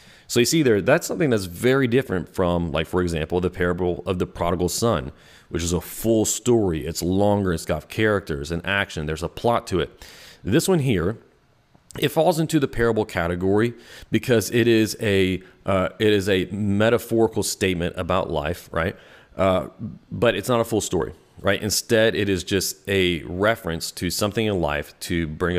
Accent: American